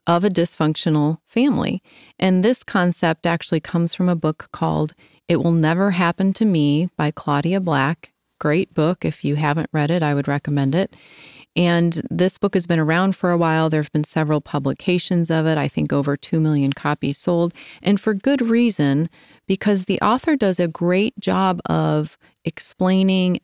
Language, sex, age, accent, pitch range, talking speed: English, female, 30-49, American, 155-190 Hz, 175 wpm